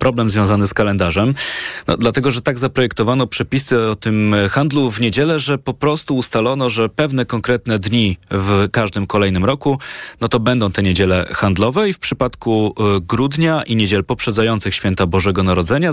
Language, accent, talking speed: Polish, native, 160 wpm